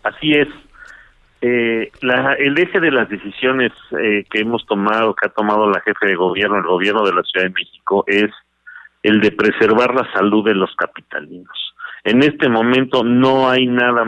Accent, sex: Mexican, male